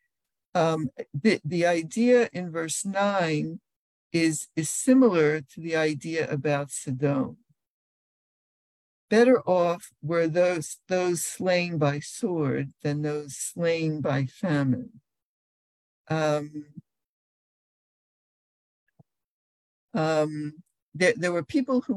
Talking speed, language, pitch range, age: 95 wpm, English, 140-180 Hz, 60-79